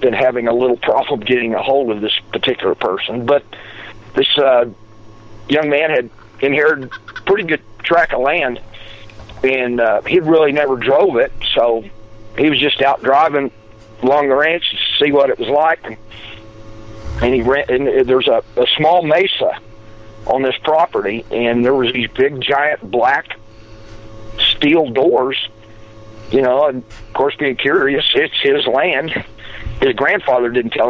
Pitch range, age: 110-135 Hz, 50-69